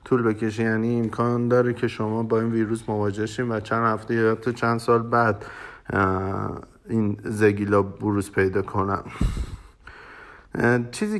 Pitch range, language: 105-125 Hz, Persian